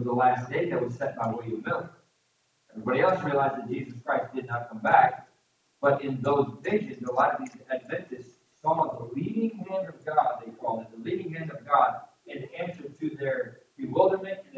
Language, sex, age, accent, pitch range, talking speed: English, male, 40-59, American, 135-190 Hz, 195 wpm